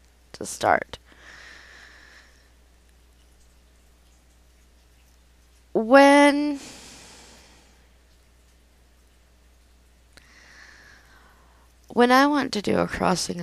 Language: English